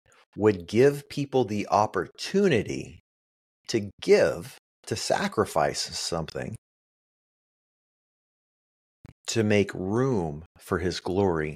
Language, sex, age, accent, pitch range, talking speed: English, male, 30-49, American, 80-115 Hz, 85 wpm